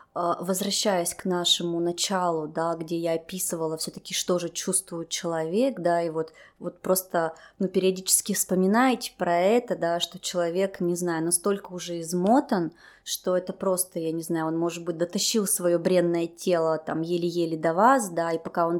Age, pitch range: 20-39, 170-195 Hz